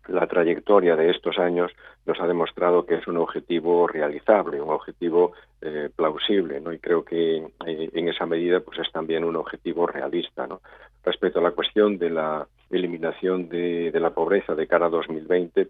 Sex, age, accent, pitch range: male, 50-69, Spanish, 80-90 Hz